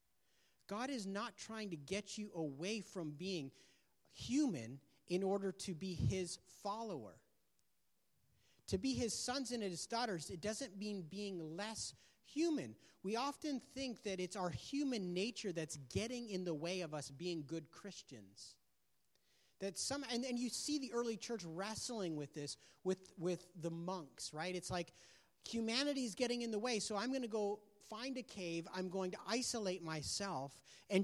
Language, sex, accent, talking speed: English, male, American, 170 wpm